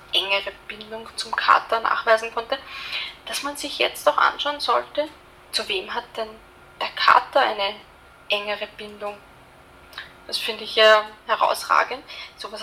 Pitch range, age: 205-235 Hz, 20-39